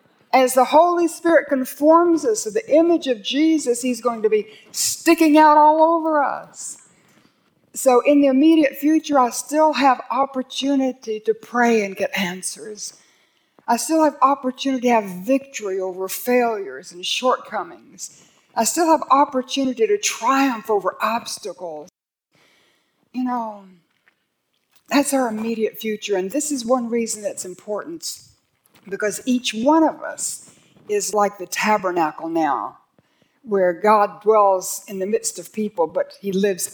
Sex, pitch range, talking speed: female, 195-270 Hz, 140 wpm